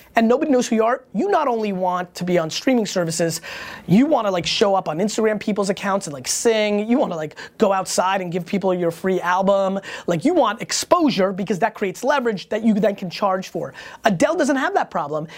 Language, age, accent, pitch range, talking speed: English, 20-39, American, 175-220 Hz, 225 wpm